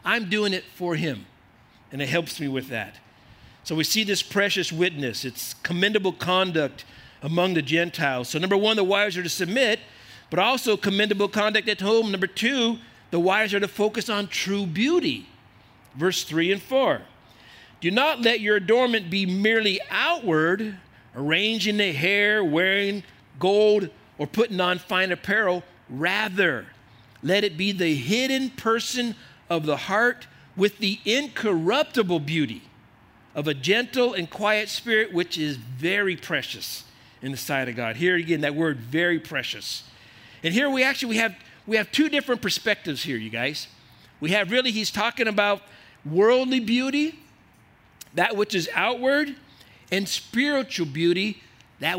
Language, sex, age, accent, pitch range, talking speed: English, male, 50-69, American, 150-220 Hz, 155 wpm